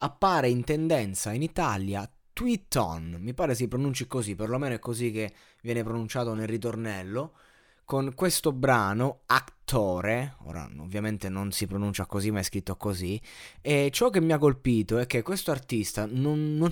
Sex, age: male, 20-39